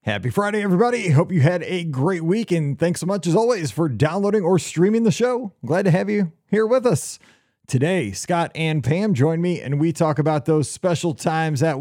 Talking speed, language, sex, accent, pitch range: 215 wpm, English, male, American, 130-170 Hz